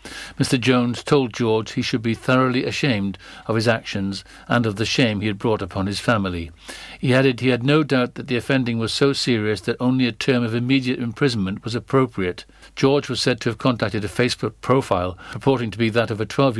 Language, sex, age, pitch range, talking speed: English, male, 60-79, 110-135 Hz, 215 wpm